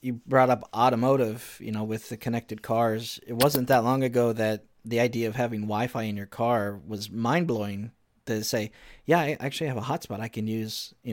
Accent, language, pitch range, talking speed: American, English, 110-130 Hz, 205 wpm